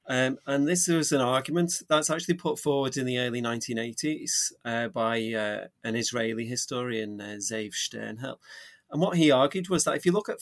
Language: English